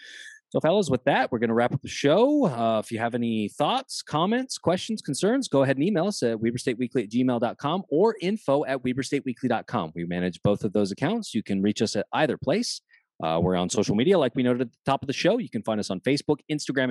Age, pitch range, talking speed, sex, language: 30-49, 110-160 Hz, 240 wpm, male, English